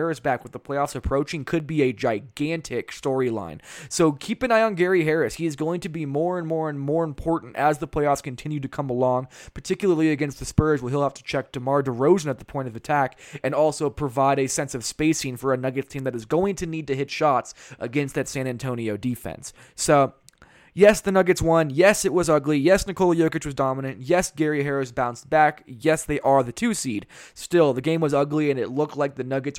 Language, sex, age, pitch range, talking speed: English, male, 20-39, 135-165 Hz, 230 wpm